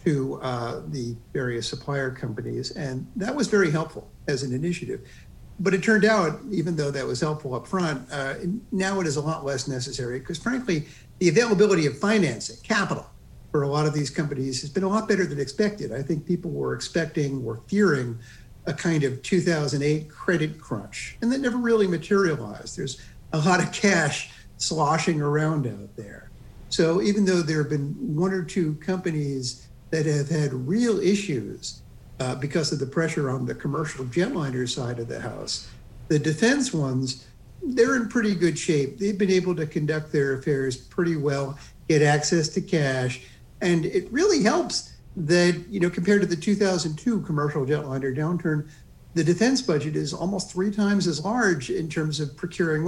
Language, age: English, 50-69